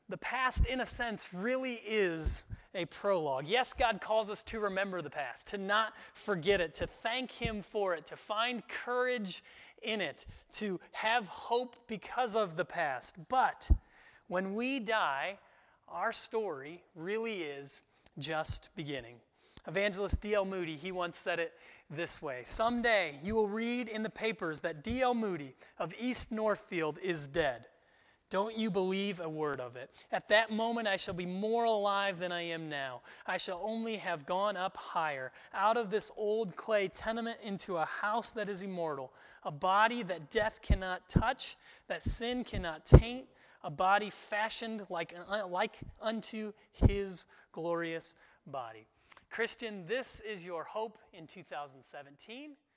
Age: 30-49